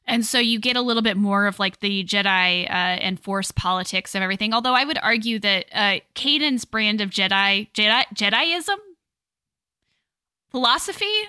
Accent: American